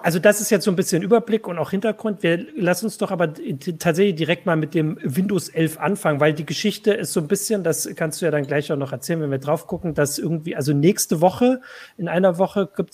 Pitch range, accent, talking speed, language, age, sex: 150-185 Hz, German, 245 wpm, German, 40-59, male